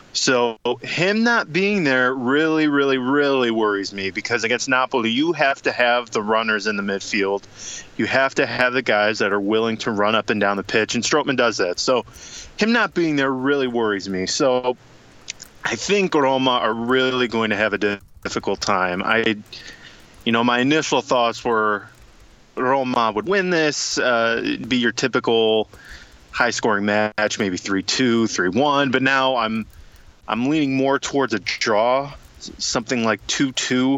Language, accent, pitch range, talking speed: English, American, 105-135 Hz, 170 wpm